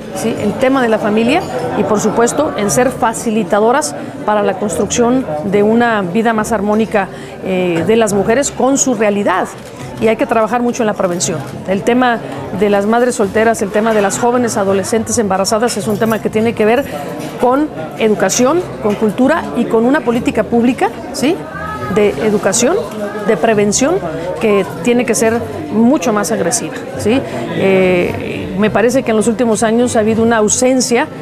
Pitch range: 205-240 Hz